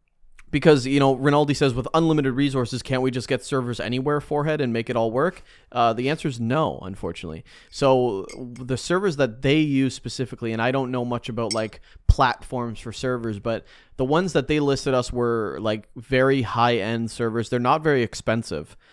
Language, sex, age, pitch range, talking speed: English, male, 30-49, 110-135 Hz, 185 wpm